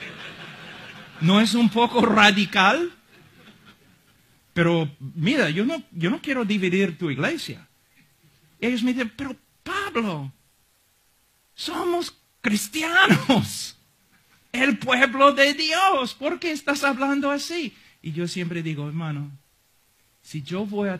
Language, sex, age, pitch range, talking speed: Spanish, male, 50-69, 130-215 Hz, 115 wpm